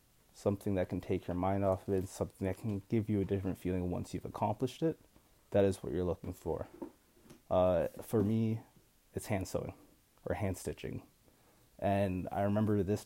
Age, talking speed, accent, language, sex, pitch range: 20-39, 185 wpm, American, English, male, 95-110 Hz